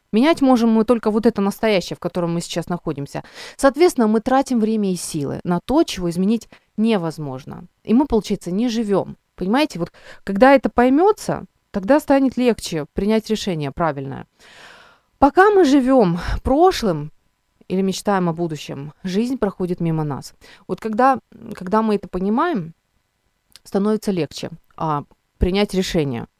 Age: 20-39